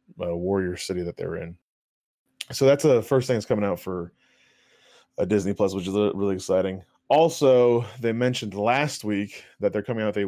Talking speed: 195 wpm